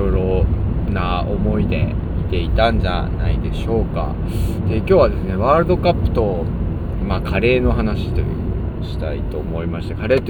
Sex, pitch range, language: male, 85-110 Hz, Japanese